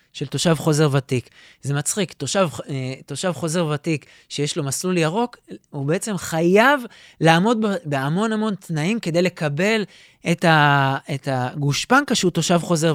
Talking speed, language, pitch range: 140 wpm, Hebrew, 125-170 Hz